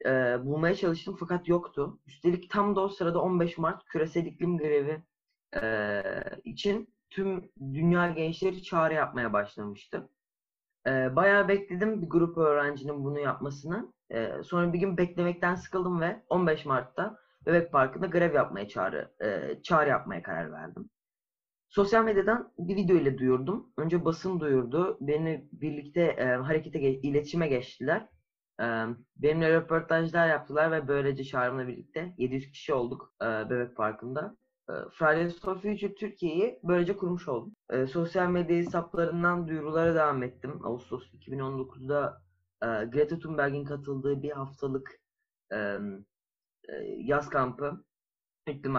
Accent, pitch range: native, 135-180 Hz